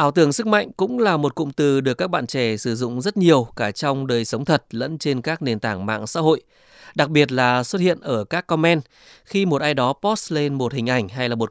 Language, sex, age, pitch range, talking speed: Vietnamese, male, 20-39, 125-165 Hz, 260 wpm